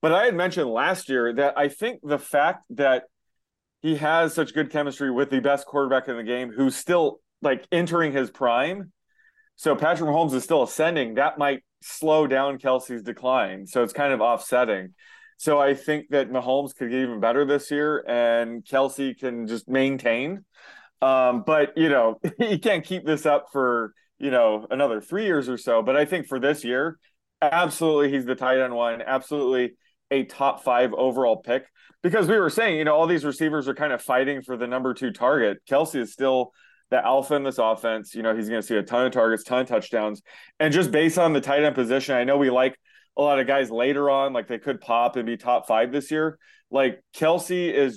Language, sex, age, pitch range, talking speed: English, male, 30-49, 125-150 Hz, 210 wpm